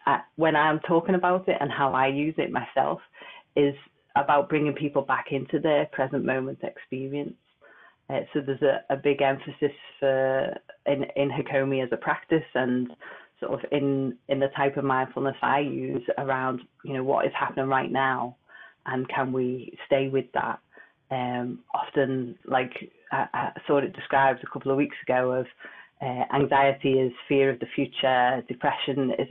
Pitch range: 125-140 Hz